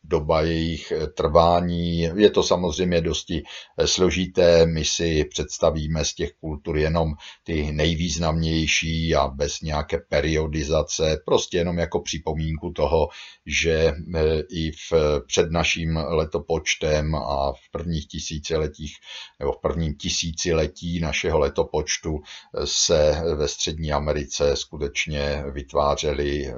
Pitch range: 75-85 Hz